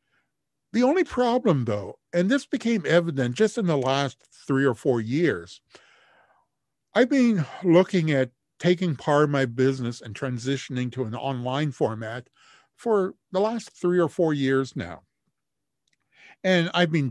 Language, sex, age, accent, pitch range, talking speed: English, male, 50-69, American, 130-185 Hz, 145 wpm